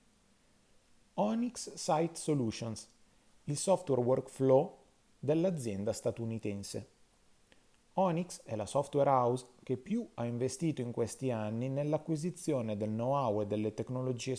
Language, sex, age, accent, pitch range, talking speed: Italian, male, 30-49, native, 110-145 Hz, 110 wpm